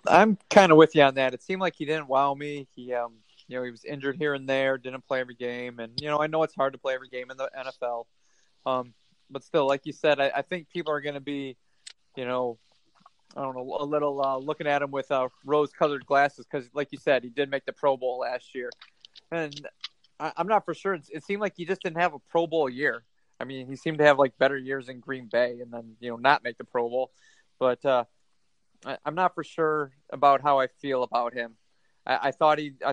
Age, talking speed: 30-49, 255 wpm